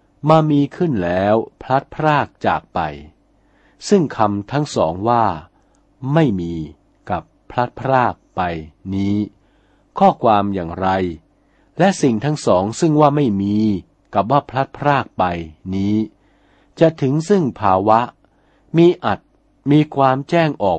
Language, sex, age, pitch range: Thai, male, 60-79, 95-135 Hz